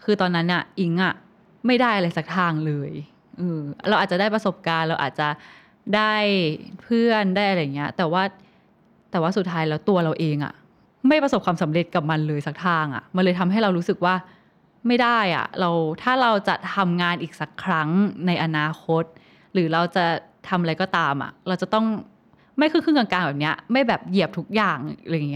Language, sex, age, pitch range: Thai, female, 10-29, 165-205 Hz